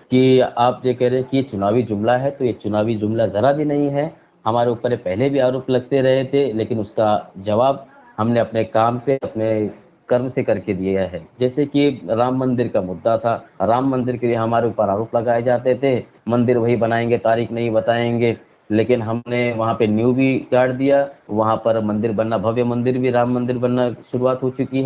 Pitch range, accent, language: 110-130 Hz, native, Hindi